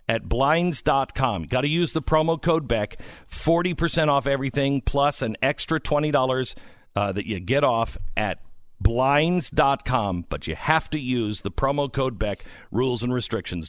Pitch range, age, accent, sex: 95-140 Hz, 50-69, American, male